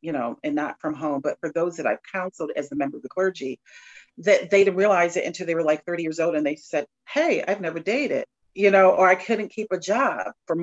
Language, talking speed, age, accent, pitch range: English, 260 wpm, 40-59, American, 160-190 Hz